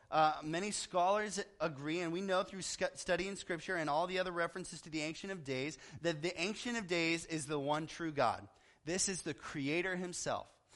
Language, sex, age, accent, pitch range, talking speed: English, male, 30-49, American, 155-205 Hz, 200 wpm